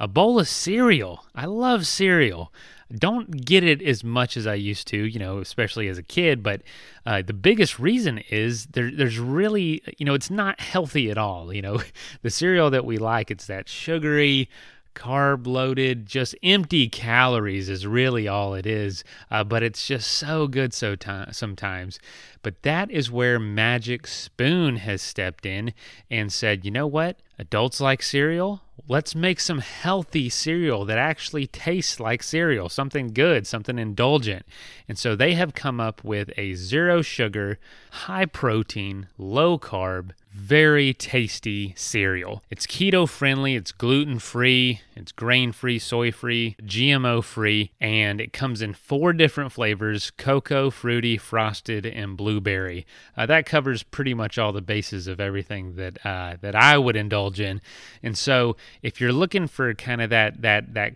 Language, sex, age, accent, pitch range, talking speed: English, male, 30-49, American, 105-145 Hz, 155 wpm